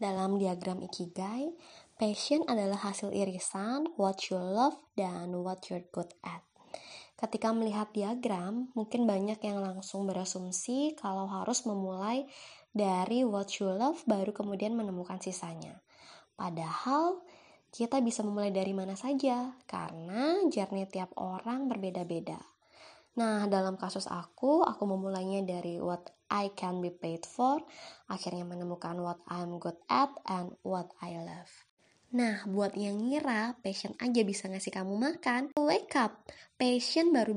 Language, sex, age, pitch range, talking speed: Indonesian, female, 20-39, 190-250 Hz, 135 wpm